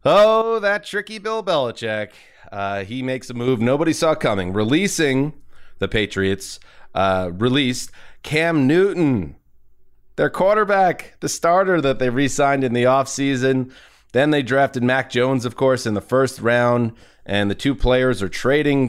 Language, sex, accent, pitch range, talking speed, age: English, male, American, 110-145 Hz, 150 wpm, 30-49